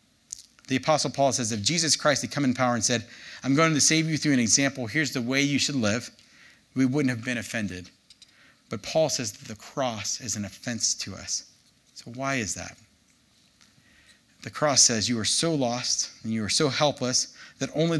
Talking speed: 205 wpm